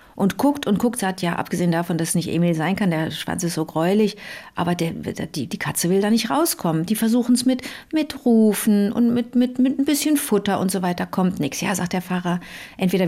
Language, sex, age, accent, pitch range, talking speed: German, female, 50-69, German, 185-245 Hz, 235 wpm